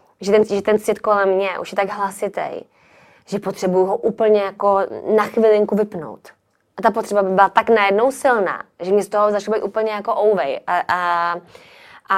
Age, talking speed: 20-39, 190 wpm